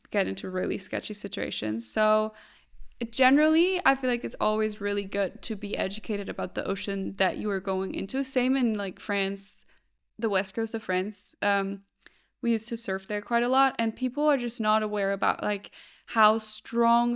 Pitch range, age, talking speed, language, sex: 205-250 Hz, 10-29, 185 wpm, English, female